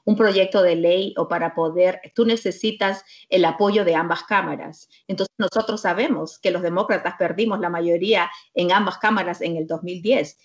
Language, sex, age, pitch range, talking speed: Spanish, female, 40-59, 180-225 Hz, 165 wpm